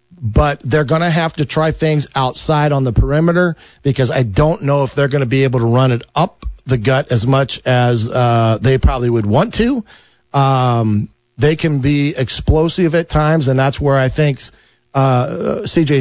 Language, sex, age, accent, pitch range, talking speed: English, male, 40-59, American, 125-155 Hz, 190 wpm